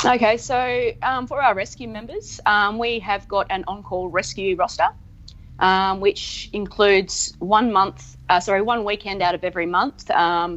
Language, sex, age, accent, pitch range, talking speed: English, female, 30-49, Australian, 175-210 Hz, 165 wpm